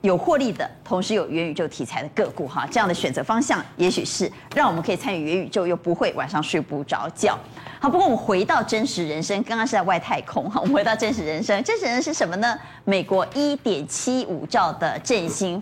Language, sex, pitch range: Chinese, female, 185-290 Hz